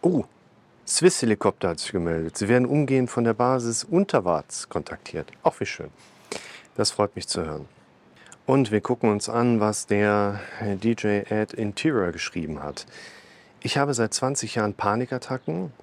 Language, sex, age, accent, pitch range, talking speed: German, male, 40-59, German, 100-125 Hz, 150 wpm